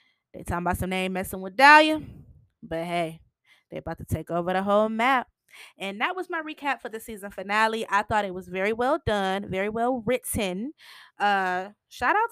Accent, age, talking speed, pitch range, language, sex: American, 20-39, 195 wpm, 190-255 Hz, English, female